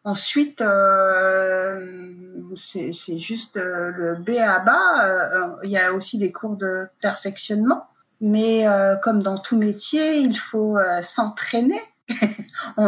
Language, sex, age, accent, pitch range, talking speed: French, female, 30-49, French, 185-225 Hz, 140 wpm